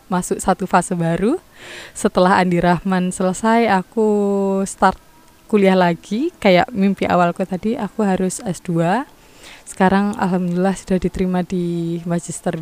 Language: Indonesian